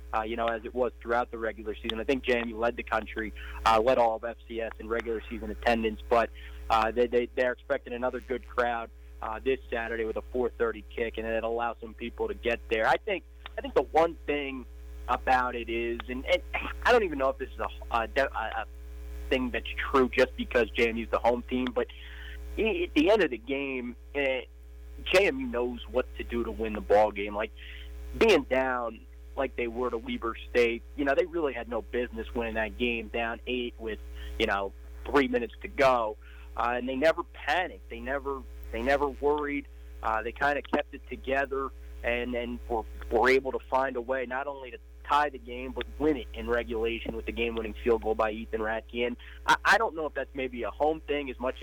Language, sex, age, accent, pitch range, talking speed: English, male, 30-49, American, 105-125 Hz, 210 wpm